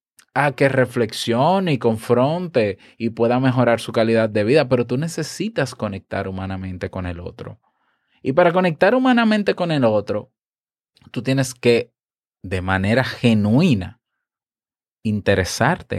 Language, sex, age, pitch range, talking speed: Spanish, male, 20-39, 115-150 Hz, 130 wpm